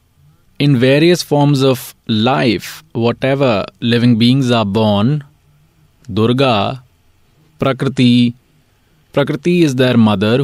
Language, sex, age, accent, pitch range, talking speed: Hindi, male, 30-49, native, 110-135 Hz, 90 wpm